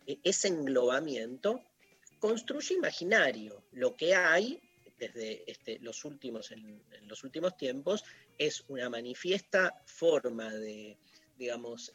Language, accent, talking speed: Spanish, Argentinian, 110 wpm